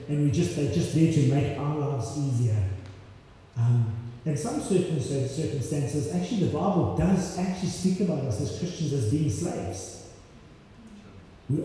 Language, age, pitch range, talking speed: English, 30-49, 130-165 Hz, 160 wpm